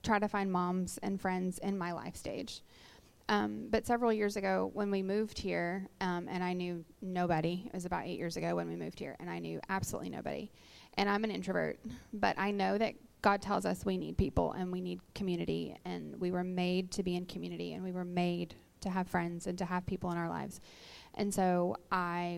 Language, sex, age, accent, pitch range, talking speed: English, female, 20-39, American, 180-210 Hz, 220 wpm